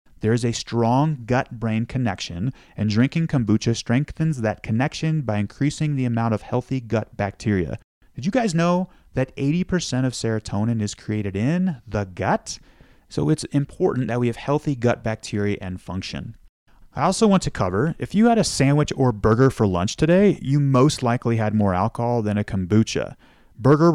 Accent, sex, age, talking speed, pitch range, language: American, male, 30-49, 175 wpm, 105-155 Hz, English